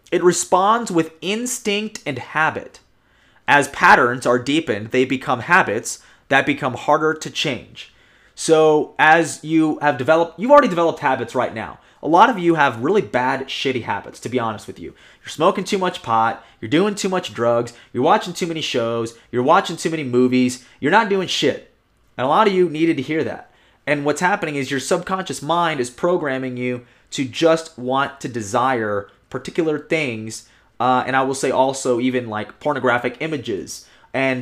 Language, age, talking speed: English, 30-49, 180 wpm